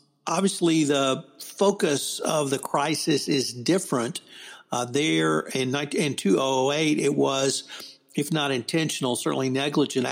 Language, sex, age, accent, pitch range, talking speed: English, male, 60-79, American, 125-145 Hz, 120 wpm